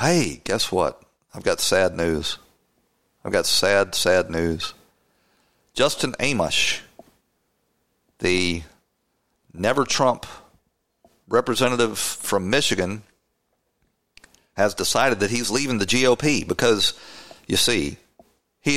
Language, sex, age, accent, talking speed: English, male, 40-59, American, 95 wpm